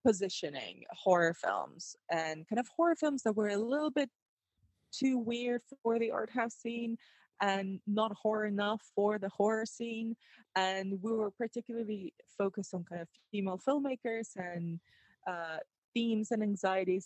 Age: 20-39